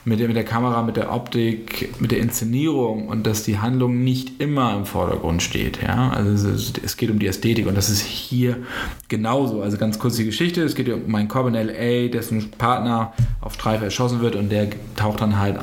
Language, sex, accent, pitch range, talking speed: German, male, German, 105-125 Hz, 215 wpm